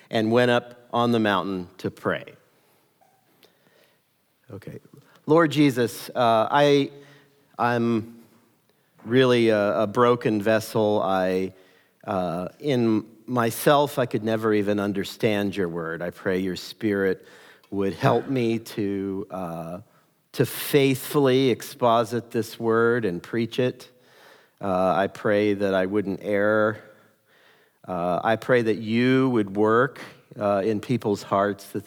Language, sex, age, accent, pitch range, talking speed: English, male, 50-69, American, 95-115 Hz, 125 wpm